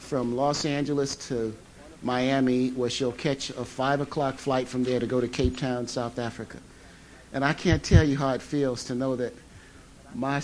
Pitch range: 120-150 Hz